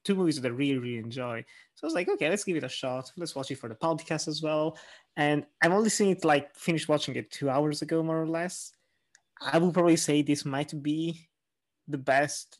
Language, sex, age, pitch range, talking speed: English, male, 20-39, 135-175 Hz, 235 wpm